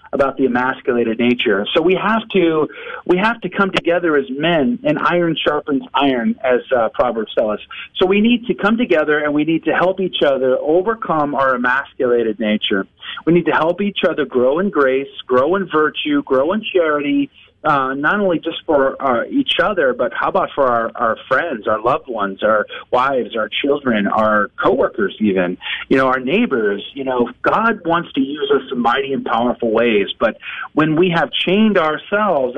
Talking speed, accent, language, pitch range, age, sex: 190 wpm, American, English, 130-185 Hz, 40-59, male